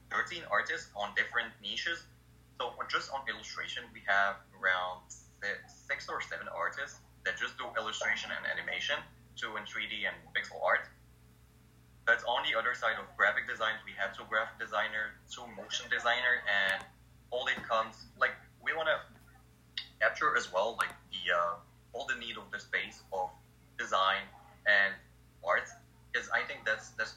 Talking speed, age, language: 165 wpm, 20-39, English